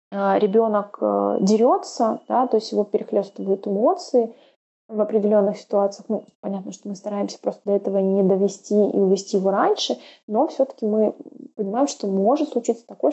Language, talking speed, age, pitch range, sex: Russian, 150 wpm, 20-39, 200-245 Hz, female